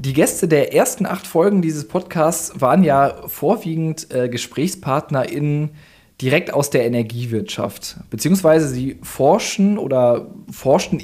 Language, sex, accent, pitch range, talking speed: German, male, German, 120-165 Hz, 120 wpm